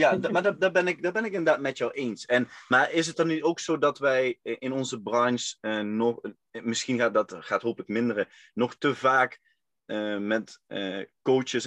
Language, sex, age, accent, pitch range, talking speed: Dutch, male, 20-39, Dutch, 110-135 Hz, 200 wpm